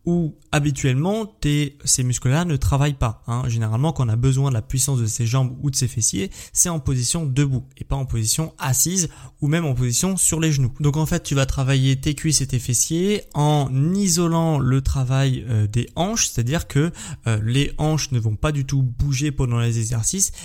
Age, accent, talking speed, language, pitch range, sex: 20-39, French, 205 wpm, French, 125-150 Hz, male